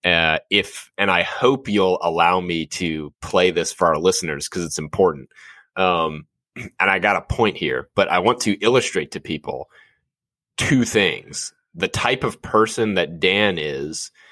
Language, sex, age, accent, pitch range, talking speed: English, male, 30-49, American, 85-115 Hz, 170 wpm